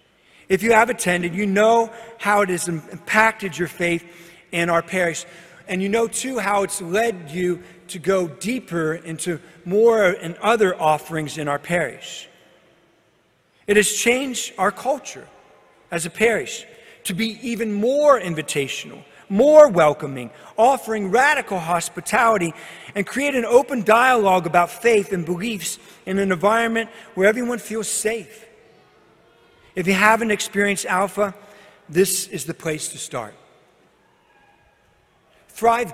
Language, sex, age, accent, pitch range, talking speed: English, male, 40-59, American, 175-225 Hz, 135 wpm